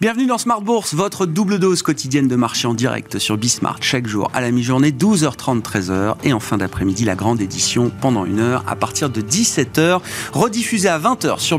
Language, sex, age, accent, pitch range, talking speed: French, male, 40-59, French, 110-150 Hz, 195 wpm